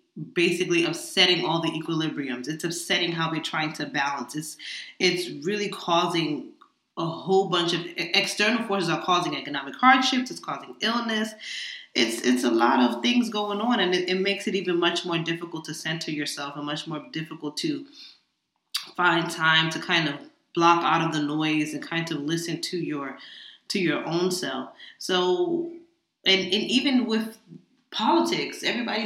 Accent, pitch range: American, 165-205 Hz